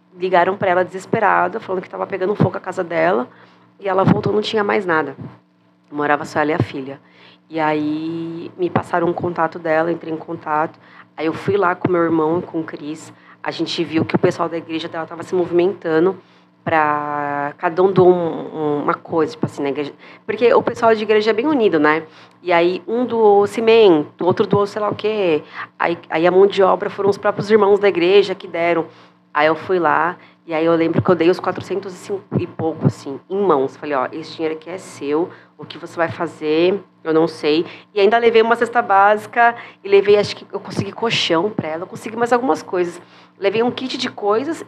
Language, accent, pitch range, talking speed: Portuguese, Brazilian, 155-205 Hz, 215 wpm